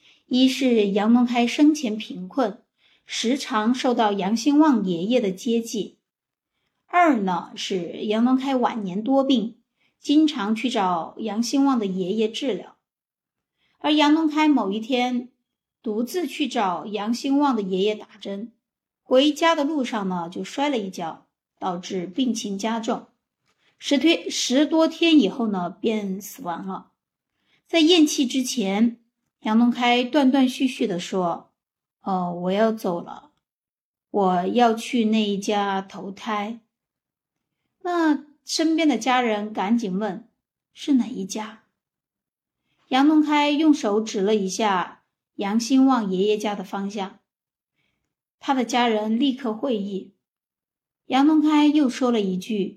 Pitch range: 205-275 Hz